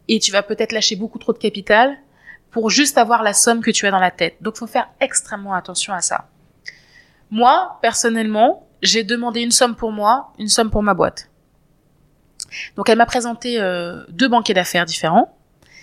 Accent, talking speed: French, 190 wpm